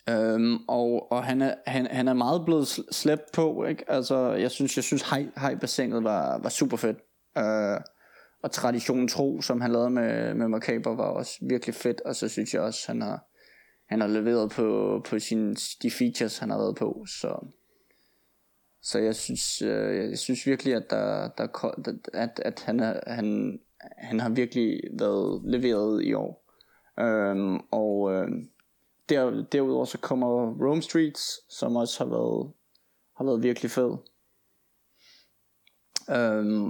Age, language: 20-39, Danish